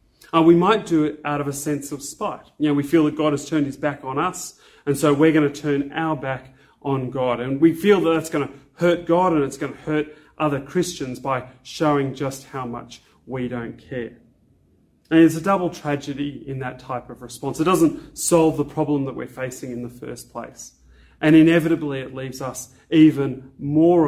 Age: 30-49